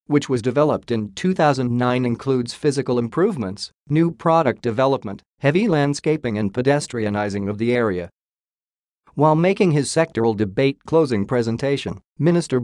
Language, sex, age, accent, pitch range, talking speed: English, male, 50-69, American, 115-150 Hz, 125 wpm